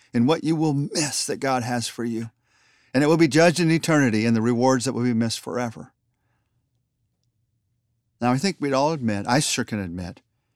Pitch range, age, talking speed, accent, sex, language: 115-150 Hz, 50-69, 200 wpm, American, male, English